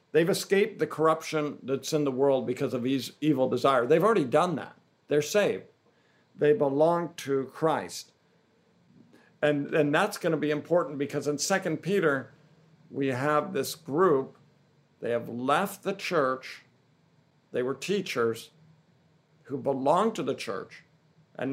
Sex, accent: male, American